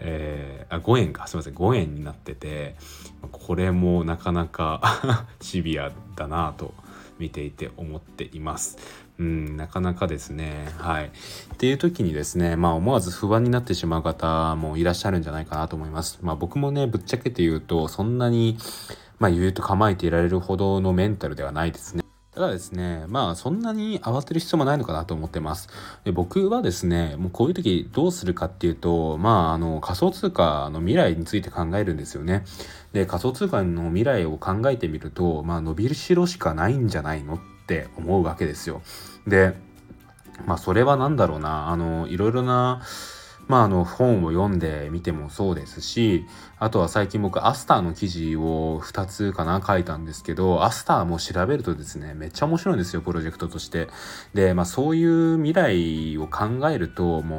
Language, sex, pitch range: Japanese, male, 80-110 Hz